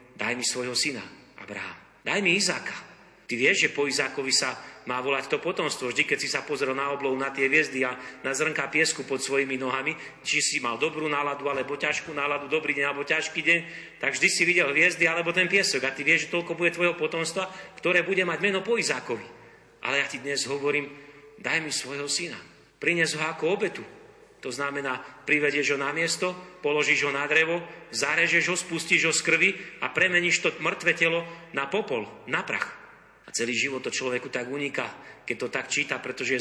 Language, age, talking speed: Slovak, 40-59, 200 wpm